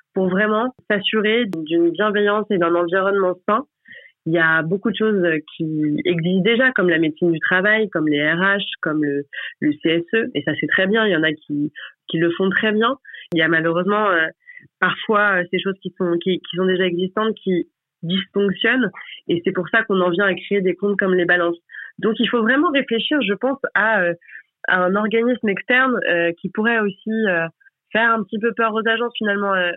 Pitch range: 170-215 Hz